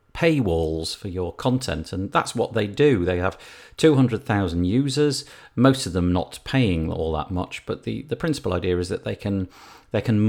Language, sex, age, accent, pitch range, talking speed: English, male, 40-59, British, 90-125 Hz, 180 wpm